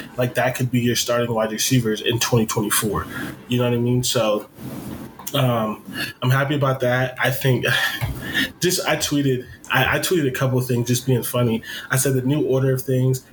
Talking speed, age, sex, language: 190 wpm, 20-39, male, English